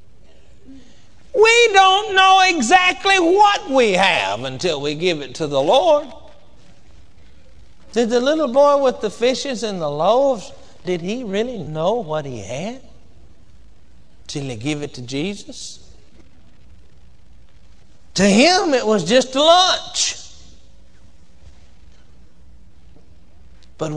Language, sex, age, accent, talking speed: English, male, 60-79, American, 110 wpm